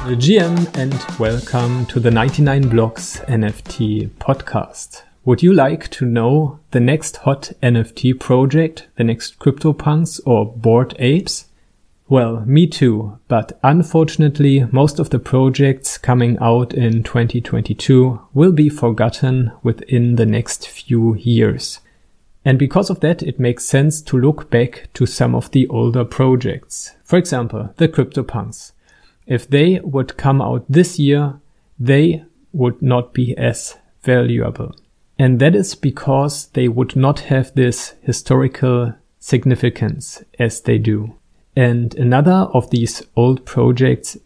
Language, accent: English, German